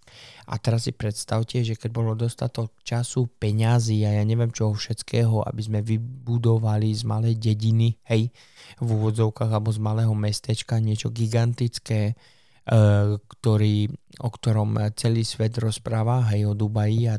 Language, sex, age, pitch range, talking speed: Slovak, male, 20-39, 105-120 Hz, 145 wpm